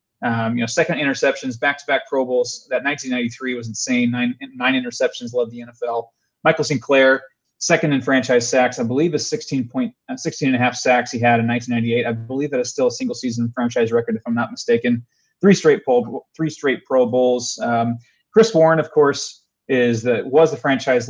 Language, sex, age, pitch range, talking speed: English, male, 30-49, 120-160 Hz, 180 wpm